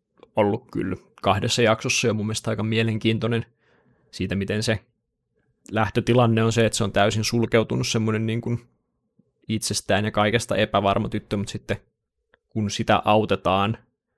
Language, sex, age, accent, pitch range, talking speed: Finnish, male, 20-39, native, 105-120 Hz, 140 wpm